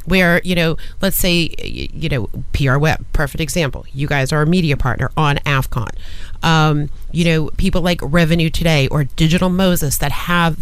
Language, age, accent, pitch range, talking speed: English, 30-49, American, 145-175 Hz, 175 wpm